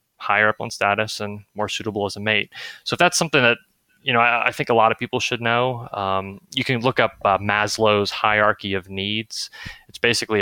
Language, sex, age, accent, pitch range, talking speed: English, male, 20-39, American, 95-110 Hz, 220 wpm